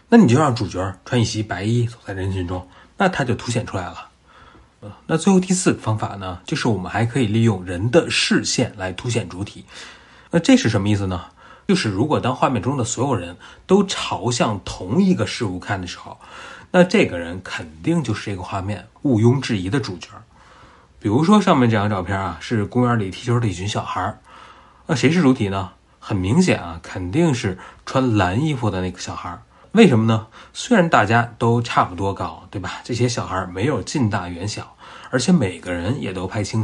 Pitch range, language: 95-130 Hz, Chinese